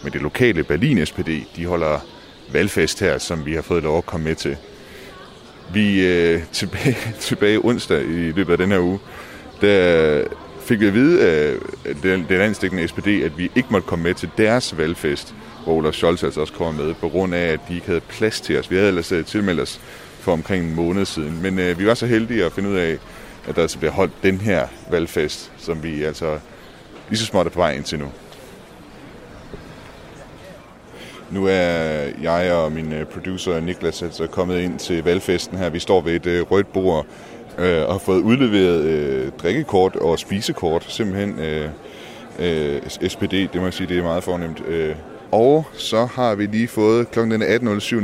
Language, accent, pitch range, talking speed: Danish, native, 85-110 Hz, 185 wpm